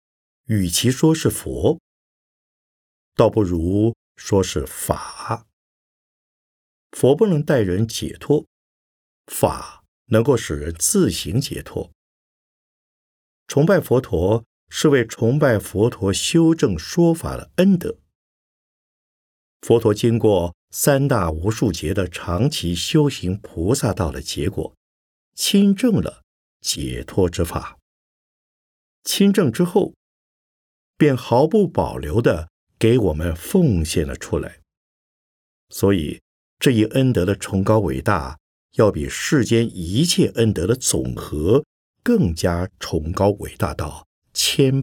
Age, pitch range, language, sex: 50-69, 85-130 Hz, Chinese, male